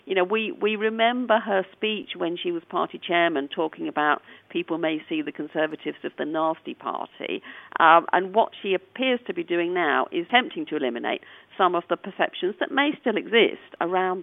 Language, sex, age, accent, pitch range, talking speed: English, female, 50-69, British, 170-260 Hz, 195 wpm